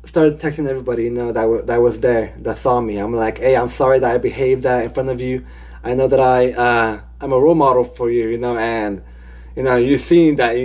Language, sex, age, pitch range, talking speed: English, male, 20-39, 115-165 Hz, 270 wpm